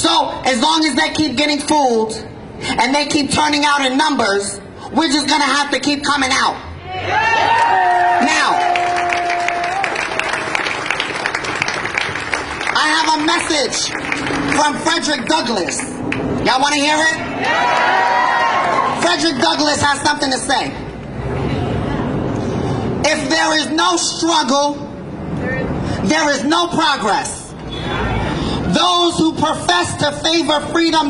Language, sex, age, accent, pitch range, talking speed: English, male, 30-49, American, 280-325 Hz, 110 wpm